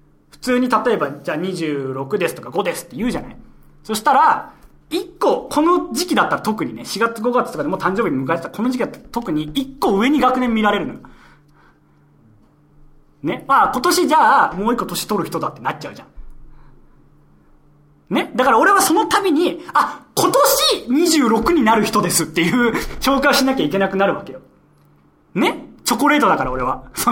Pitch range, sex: 180-295 Hz, male